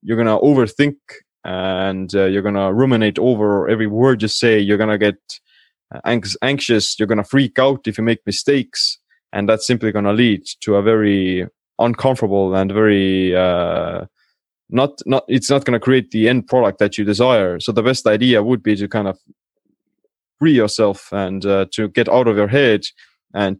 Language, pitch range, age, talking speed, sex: English, 100-120 Hz, 20-39, 195 wpm, male